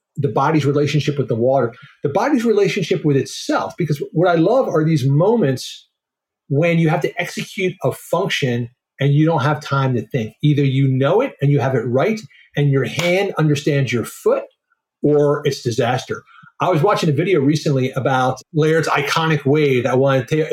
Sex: male